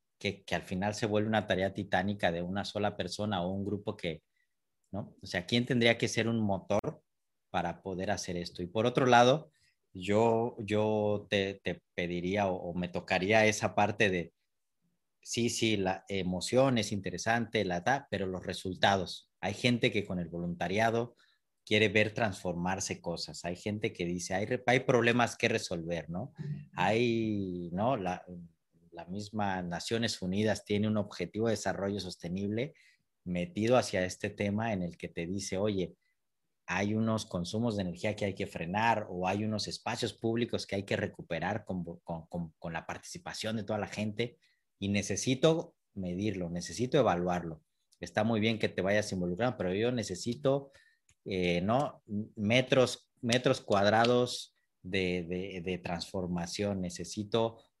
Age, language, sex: 40-59, Spanish, male